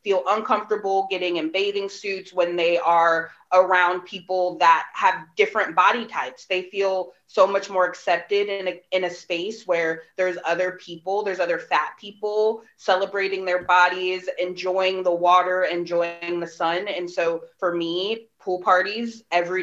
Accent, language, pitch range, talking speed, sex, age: American, English, 175-220 Hz, 155 wpm, female, 20-39